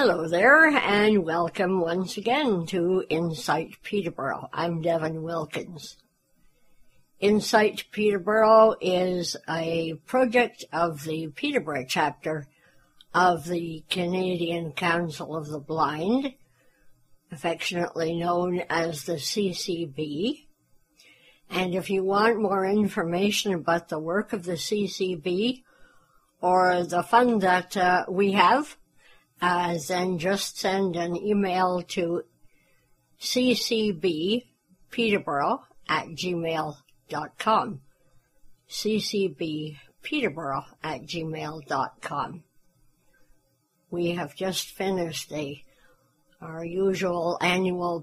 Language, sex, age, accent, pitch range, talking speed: English, female, 60-79, American, 165-200 Hz, 90 wpm